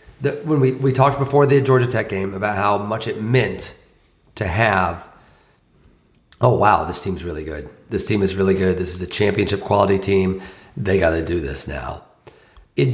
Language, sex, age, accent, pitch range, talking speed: English, male, 40-59, American, 100-135 Hz, 180 wpm